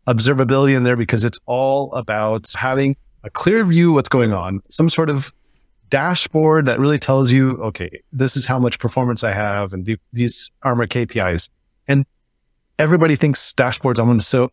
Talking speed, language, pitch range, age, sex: 175 wpm, English, 110-145 Hz, 30-49, male